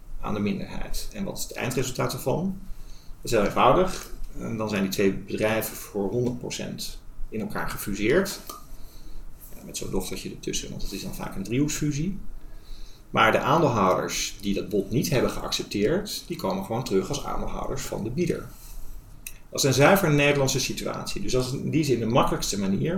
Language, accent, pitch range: Dutch, Dutch, 115-155 Hz